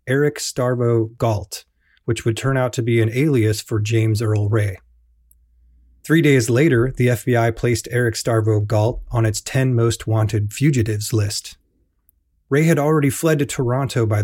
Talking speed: 160 wpm